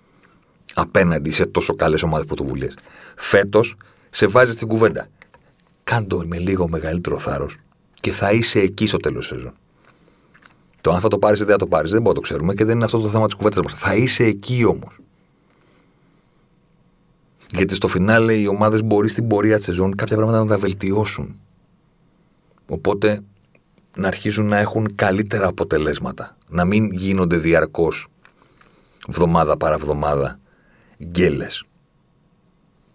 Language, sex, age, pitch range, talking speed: Greek, male, 40-59, 95-115 Hz, 150 wpm